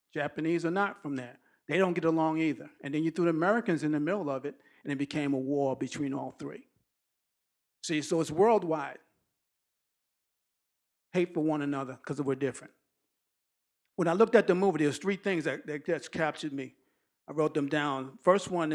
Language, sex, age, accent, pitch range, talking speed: English, male, 50-69, American, 140-175 Hz, 190 wpm